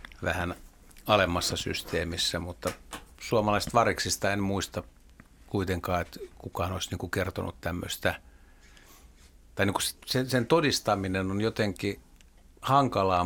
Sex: male